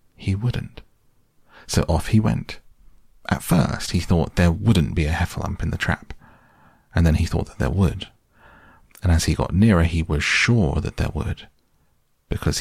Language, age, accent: English, 40-59, British